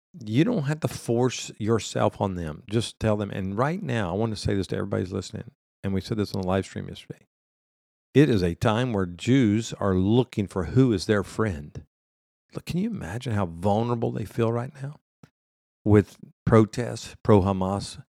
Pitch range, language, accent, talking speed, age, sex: 95-110 Hz, English, American, 190 wpm, 50-69, male